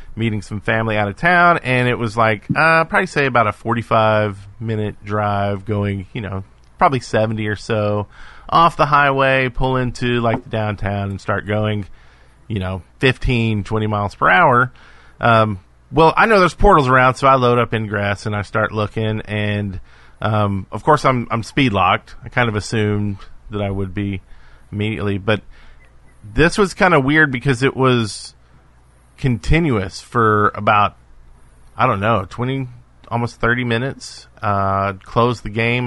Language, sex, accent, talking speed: English, male, American, 160 wpm